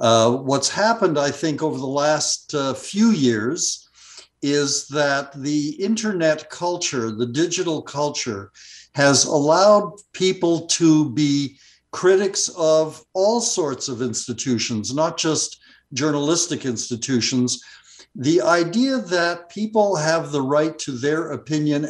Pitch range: 130-175 Hz